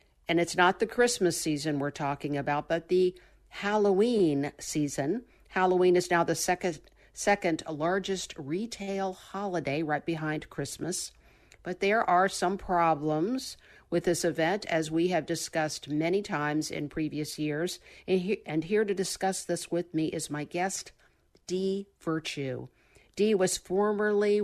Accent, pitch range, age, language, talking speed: American, 155-180 Hz, 50-69, English, 140 wpm